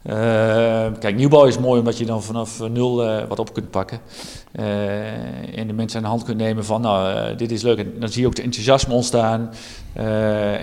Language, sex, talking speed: Dutch, male, 220 wpm